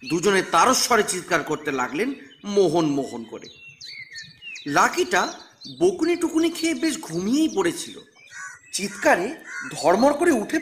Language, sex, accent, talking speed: Bengali, male, native, 105 wpm